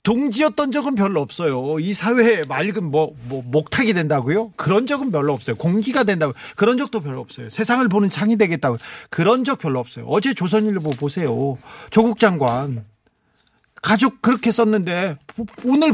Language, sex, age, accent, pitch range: Korean, male, 40-59, native, 145-220 Hz